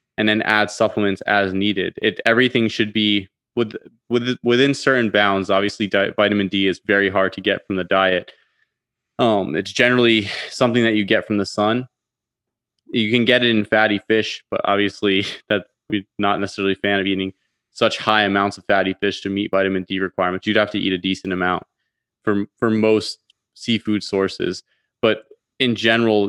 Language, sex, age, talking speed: English, male, 20-39, 185 wpm